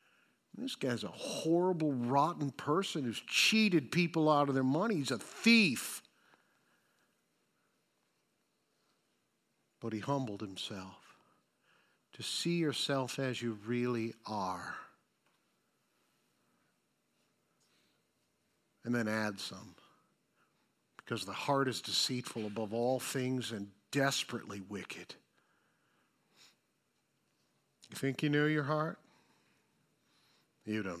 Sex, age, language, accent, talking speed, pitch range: male, 50-69, English, American, 95 wpm, 115-155 Hz